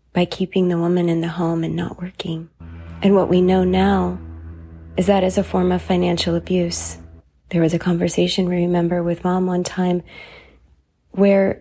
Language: English